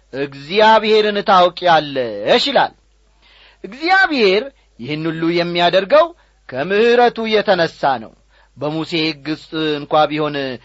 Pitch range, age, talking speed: 160-225 Hz, 40-59, 85 wpm